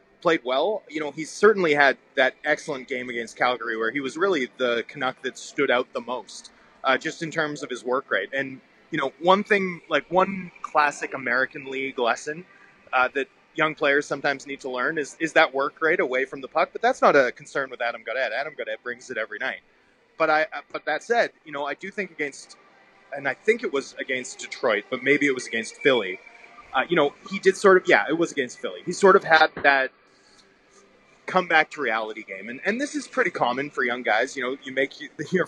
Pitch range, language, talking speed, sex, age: 130-160 Hz, English, 225 wpm, male, 20-39